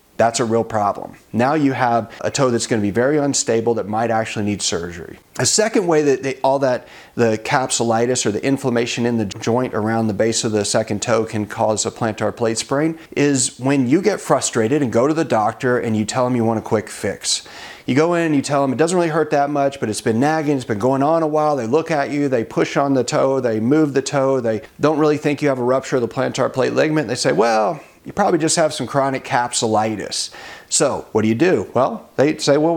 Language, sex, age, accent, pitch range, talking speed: English, male, 40-59, American, 115-155 Hz, 250 wpm